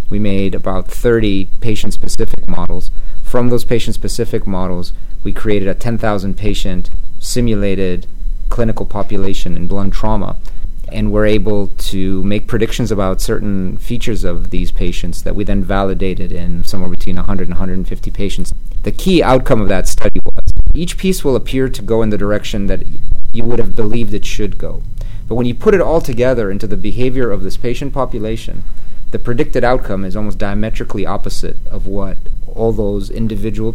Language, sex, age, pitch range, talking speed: English, male, 40-59, 95-115 Hz, 165 wpm